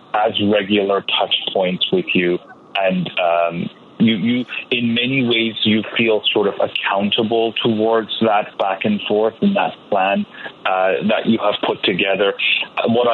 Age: 30-49